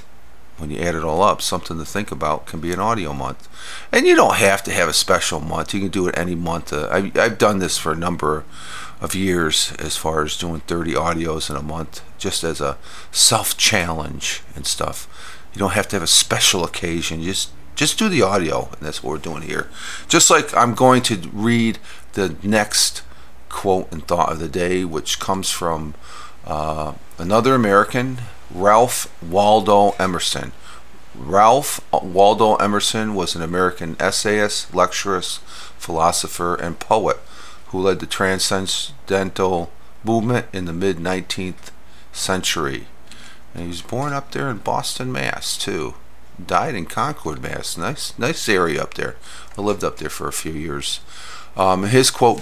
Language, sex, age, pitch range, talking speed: English, male, 40-59, 75-100 Hz, 170 wpm